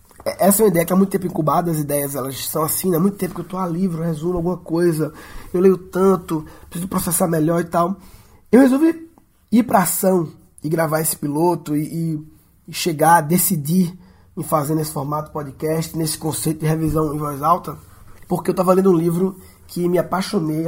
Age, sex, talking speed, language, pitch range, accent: 20-39, male, 205 wpm, Portuguese, 155-190 Hz, Brazilian